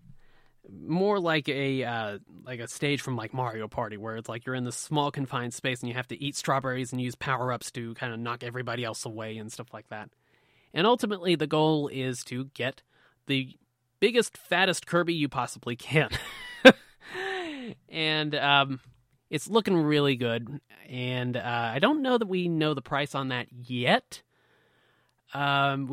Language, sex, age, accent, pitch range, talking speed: English, male, 30-49, American, 120-150 Hz, 170 wpm